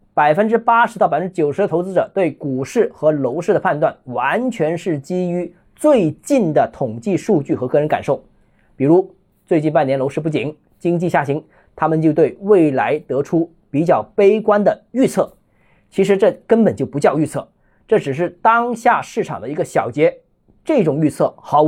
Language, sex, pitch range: Chinese, male, 160-225 Hz